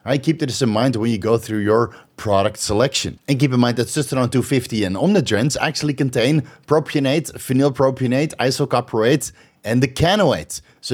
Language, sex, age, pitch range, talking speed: English, male, 30-49, 120-150 Hz, 165 wpm